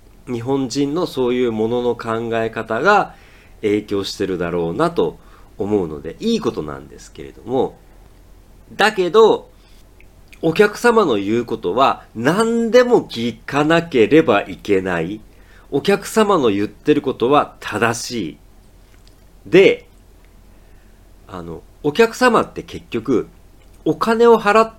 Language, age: Japanese, 40-59